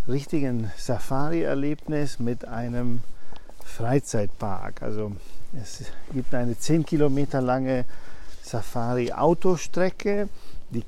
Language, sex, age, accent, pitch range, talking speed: German, male, 50-69, German, 120-150 Hz, 75 wpm